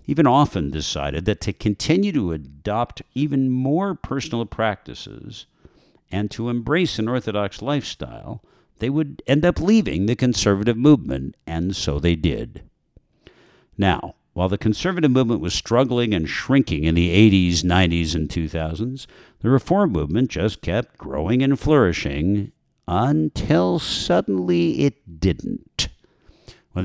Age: 60-79